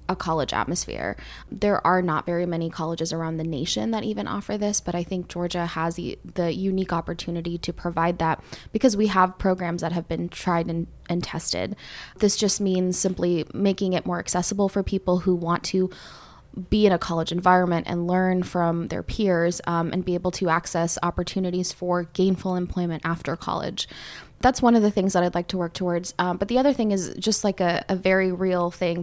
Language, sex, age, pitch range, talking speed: English, female, 20-39, 170-190 Hz, 205 wpm